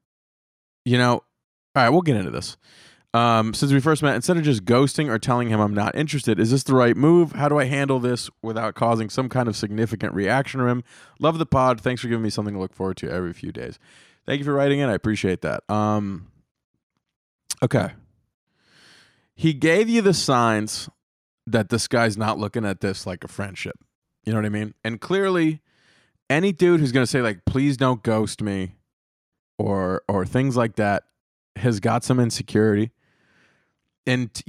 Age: 20-39